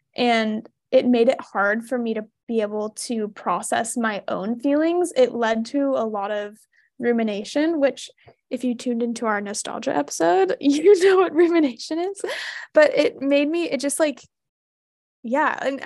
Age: 20-39